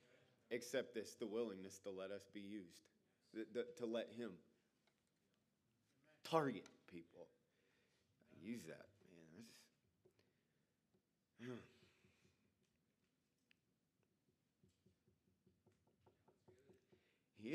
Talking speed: 70 wpm